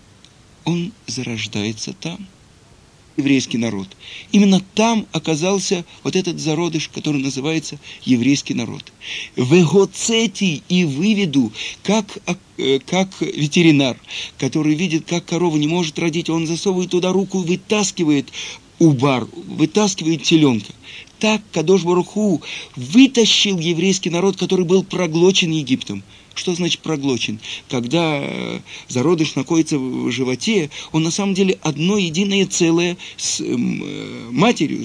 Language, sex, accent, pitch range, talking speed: Russian, male, native, 140-190 Hz, 110 wpm